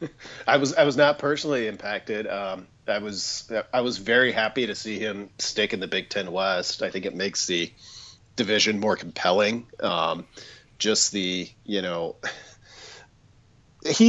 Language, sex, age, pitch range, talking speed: English, male, 40-59, 105-130 Hz, 160 wpm